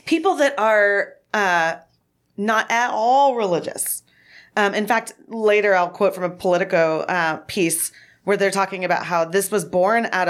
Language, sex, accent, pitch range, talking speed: English, female, American, 170-210 Hz, 165 wpm